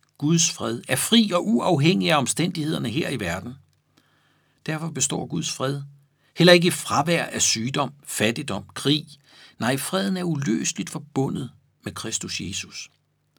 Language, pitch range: Danish, 125-170 Hz